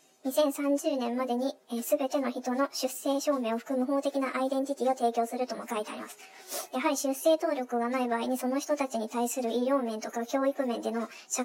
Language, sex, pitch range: Japanese, male, 235-275 Hz